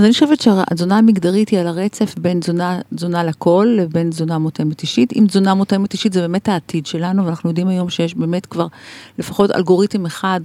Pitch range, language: 175-220 Hz, English